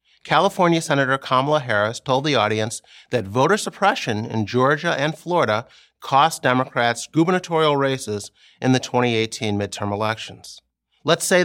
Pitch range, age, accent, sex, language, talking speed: 125-170 Hz, 30-49, American, male, English, 130 wpm